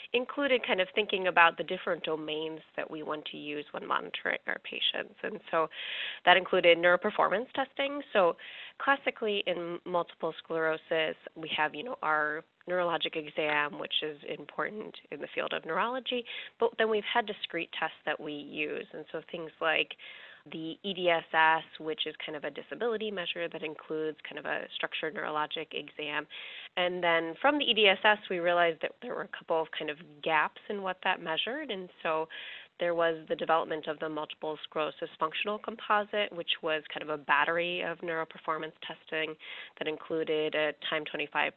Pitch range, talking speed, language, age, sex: 155-205 Hz, 170 wpm, English, 20-39, female